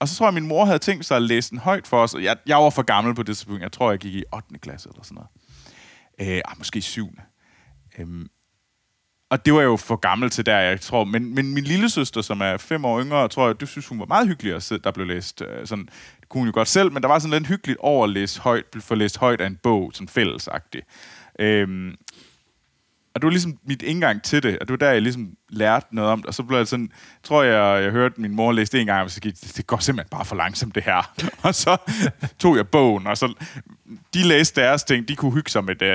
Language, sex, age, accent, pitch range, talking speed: Danish, male, 20-39, native, 105-145 Hz, 260 wpm